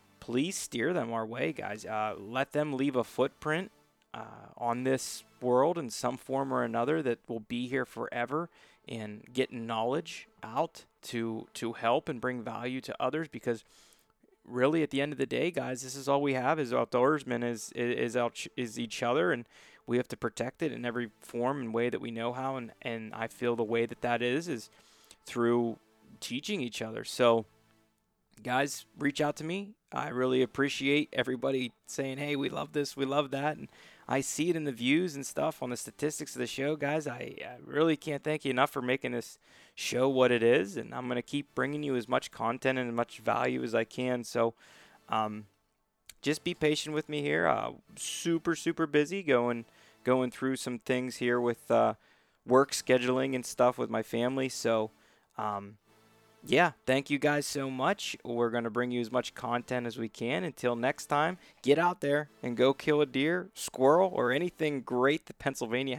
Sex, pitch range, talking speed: male, 120-145 Hz, 195 wpm